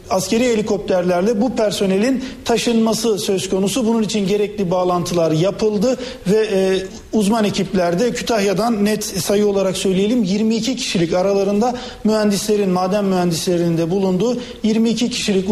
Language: Turkish